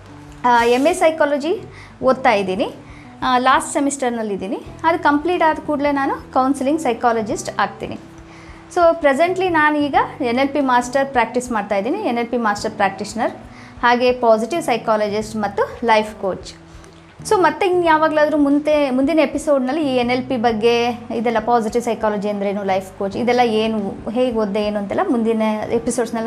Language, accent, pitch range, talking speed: Kannada, native, 230-310 Hz, 145 wpm